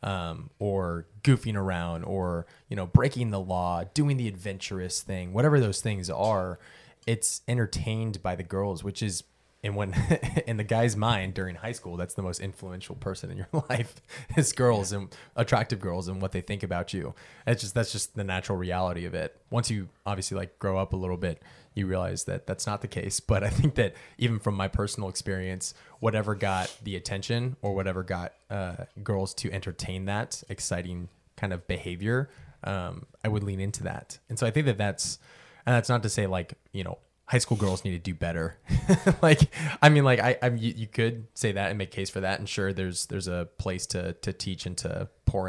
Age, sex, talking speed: 20-39, male, 205 wpm